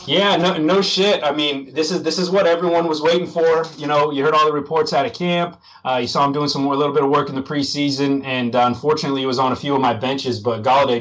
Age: 30-49